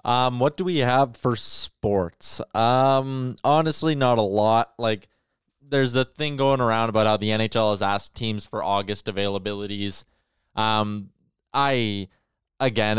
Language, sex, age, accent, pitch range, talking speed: English, male, 20-39, American, 105-125 Hz, 145 wpm